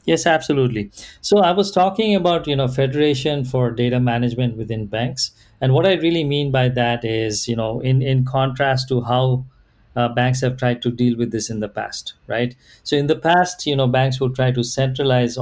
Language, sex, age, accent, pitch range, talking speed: English, male, 50-69, Indian, 115-140 Hz, 205 wpm